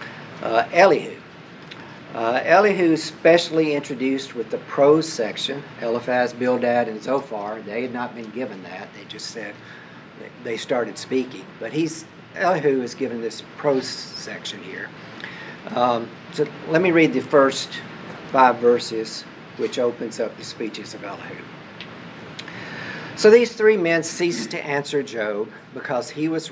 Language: English